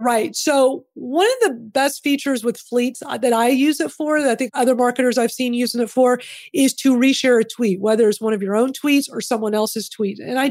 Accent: American